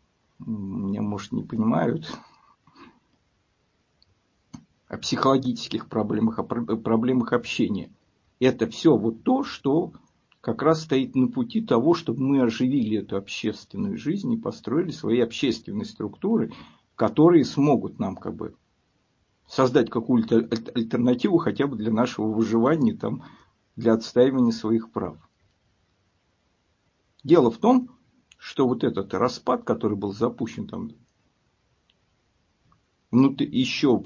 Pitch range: 105-130 Hz